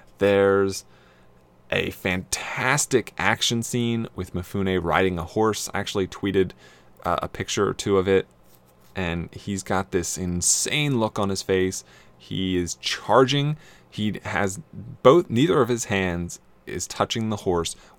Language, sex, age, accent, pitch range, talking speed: English, male, 20-39, American, 85-105 Hz, 145 wpm